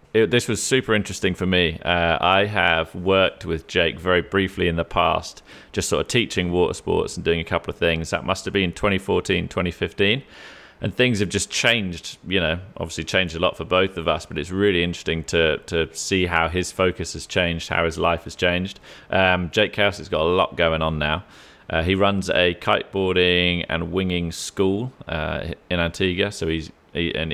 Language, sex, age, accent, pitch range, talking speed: English, male, 30-49, British, 80-95 Hz, 200 wpm